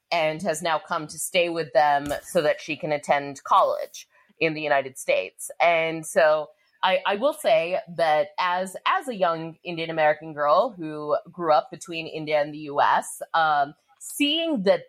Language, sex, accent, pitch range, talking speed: English, female, American, 155-195 Hz, 175 wpm